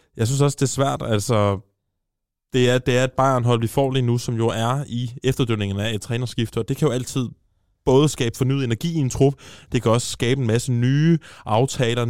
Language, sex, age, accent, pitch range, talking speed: Danish, male, 20-39, native, 105-125 Hz, 225 wpm